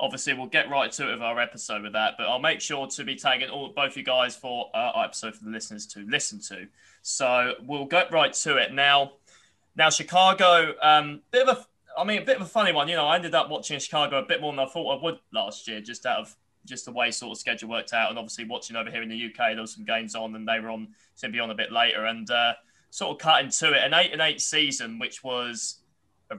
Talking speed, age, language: 265 wpm, 20-39, English